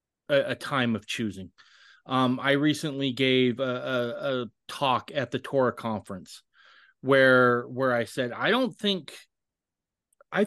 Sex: male